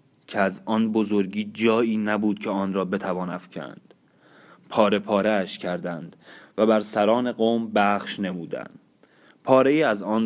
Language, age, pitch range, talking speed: Persian, 30-49, 100-110 Hz, 140 wpm